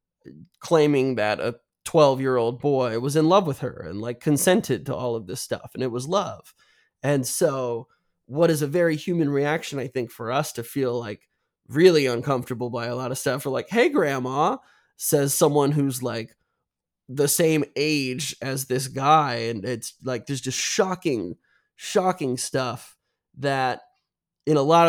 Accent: American